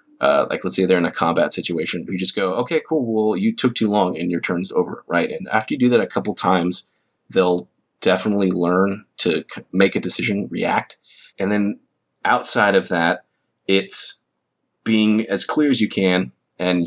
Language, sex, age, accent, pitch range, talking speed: English, male, 30-49, American, 90-110 Hz, 190 wpm